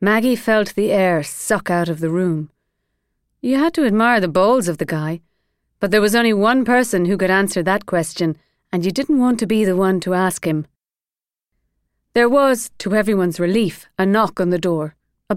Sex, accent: female, Irish